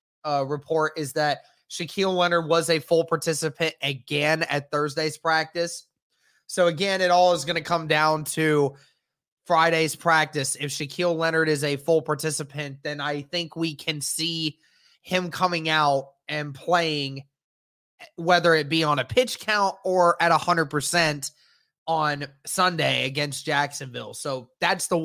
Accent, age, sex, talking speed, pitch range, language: American, 20-39, male, 150 wpm, 145-165 Hz, English